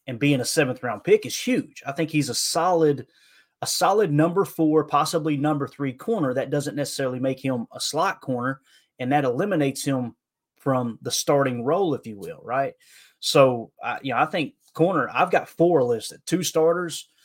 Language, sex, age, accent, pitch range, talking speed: English, male, 30-49, American, 125-155 Hz, 185 wpm